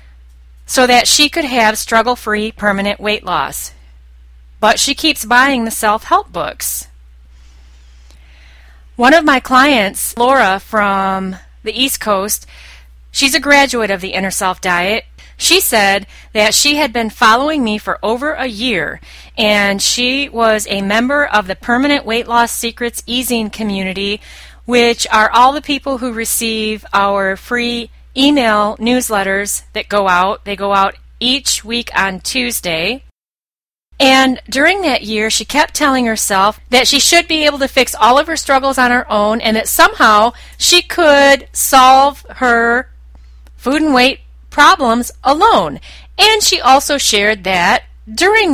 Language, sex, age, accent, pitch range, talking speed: English, female, 30-49, American, 195-265 Hz, 145 wpm